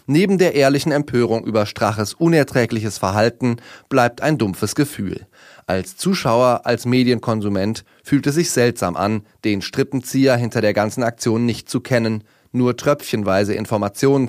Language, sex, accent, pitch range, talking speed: German, male, German, 110-140 Hz, 140 wpm